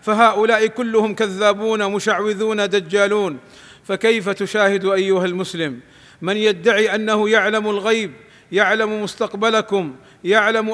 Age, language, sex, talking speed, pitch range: 40-59, Arabic, male, 95 wpm, 200-220 Hz